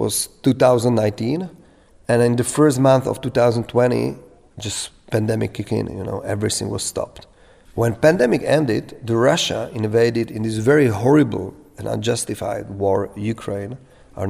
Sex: male